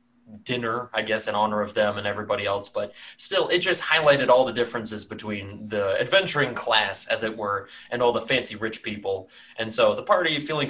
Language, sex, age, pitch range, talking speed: English, male, 20-39, 105-130 Hz, 200 wpm